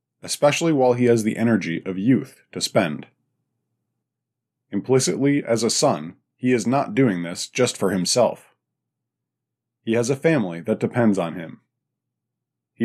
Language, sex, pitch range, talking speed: English, male, 100-130 Hz, 145 wpm